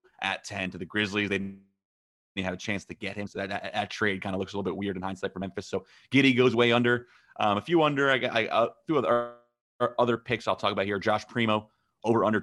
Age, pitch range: 30-49, 95-105 Hz